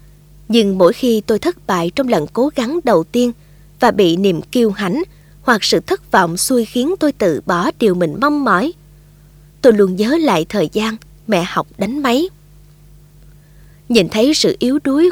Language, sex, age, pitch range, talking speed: Vietnamese, female, 20-39, 155-240 Hz, 180 wpm